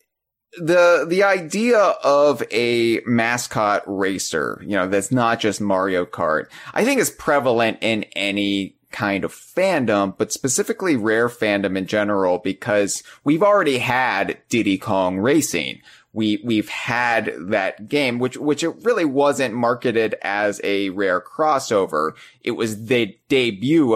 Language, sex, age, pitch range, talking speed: English, male, 30-49, 95-130 Hz, 140 wpm